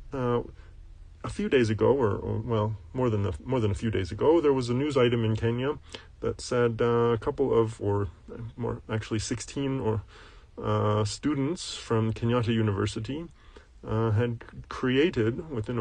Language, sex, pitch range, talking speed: English, male, 110-125 Hz, 165 wpm